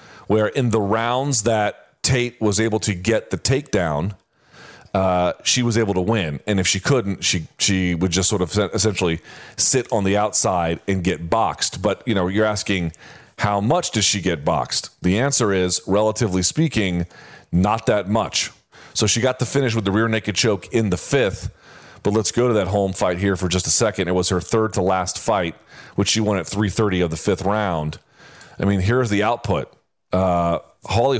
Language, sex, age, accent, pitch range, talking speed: English, male, 40-59, American, 95-110 Hz, 200 wpm